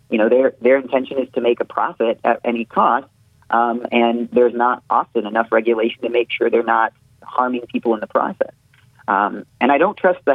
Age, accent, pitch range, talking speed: 30-49, American, 110-125 Hz, 210 wpm